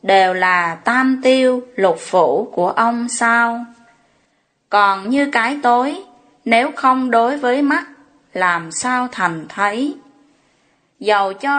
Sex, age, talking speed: female, 20-39, 125 wpm